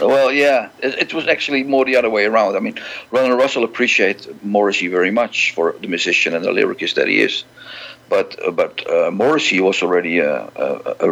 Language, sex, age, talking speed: English, male, 50-69, 205 wpm